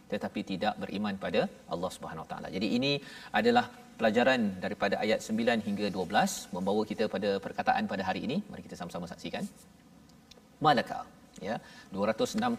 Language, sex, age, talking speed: Malayalam, male, 40-59, 140 wpm